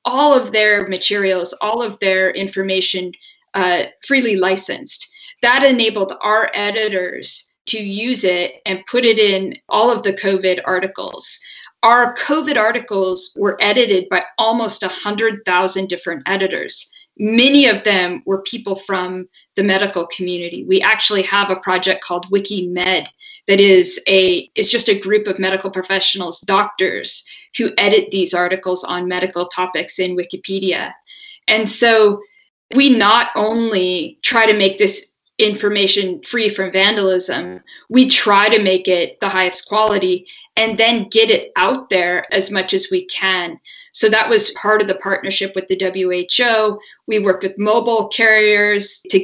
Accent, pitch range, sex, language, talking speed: American, 185-225 Hz, female, English, 145 wpm